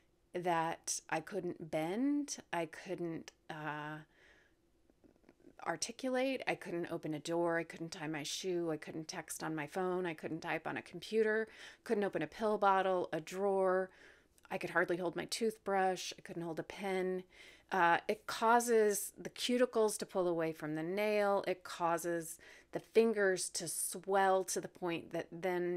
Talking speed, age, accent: 165 wpm, 30-49, American